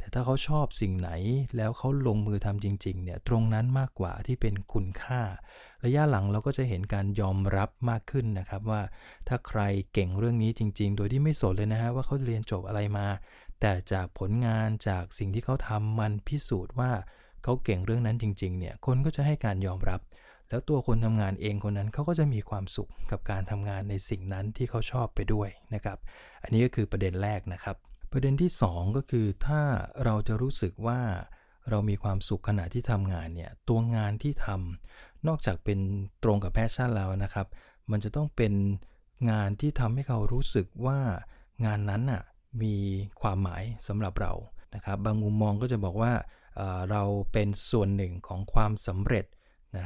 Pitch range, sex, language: 100-120 Hz, male, English